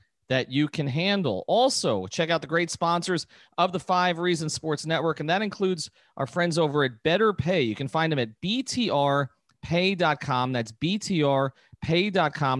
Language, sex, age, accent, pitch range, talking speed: English, male, 40-59, American, 125-170 Hz, 155 wpm